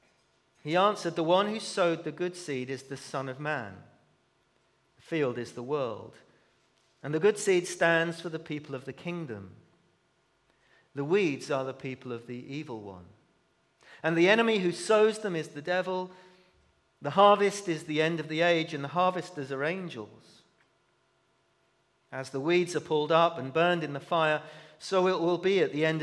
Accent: British